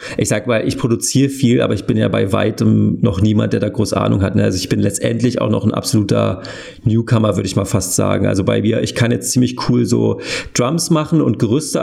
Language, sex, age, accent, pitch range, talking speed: German, male, 40-59, German, 105-120 Hz, 235 wpm